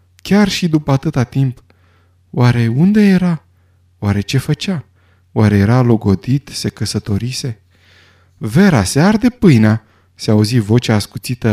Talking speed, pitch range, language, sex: 125 wpm, 95-140 Hz, Romanian, male